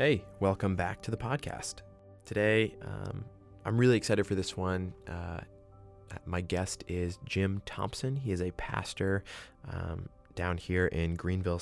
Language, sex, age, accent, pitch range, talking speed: English, male, 20-39, American, 85-100 Hz, 150 wpm